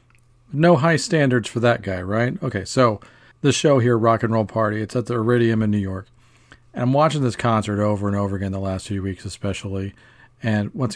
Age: 40-59